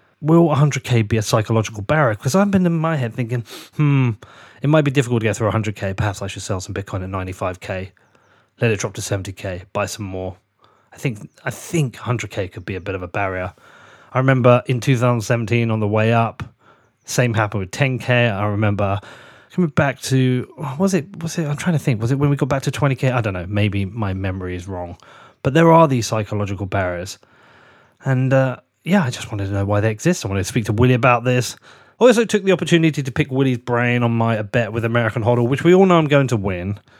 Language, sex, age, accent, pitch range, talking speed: English, male, 30-49, British, 100-135 Hz, 225 wpm